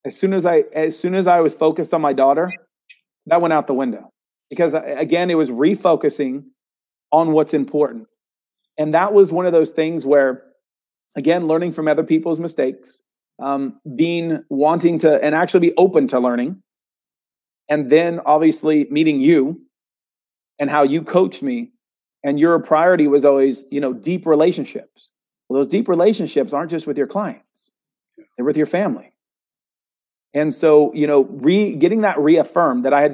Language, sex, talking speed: English, male, 170 wpm